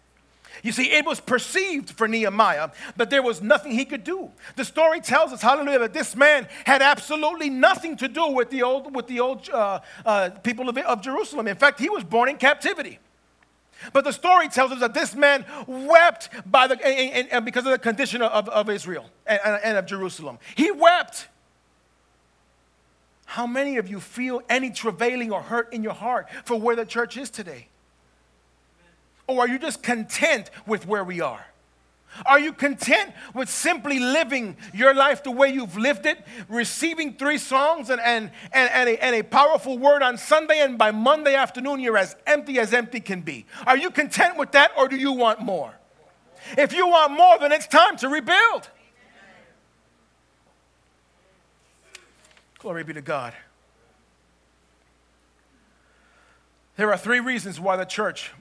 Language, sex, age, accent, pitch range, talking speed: English, male, 40-59, American, 205-285 Hz, 170 wpm